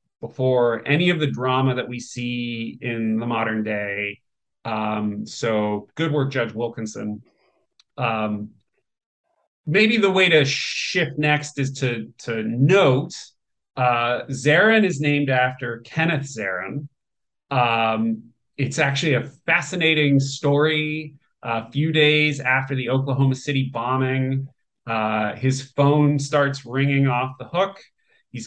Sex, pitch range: male, 120-155 Hz